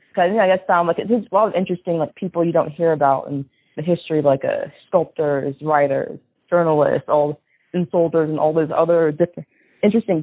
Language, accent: English, American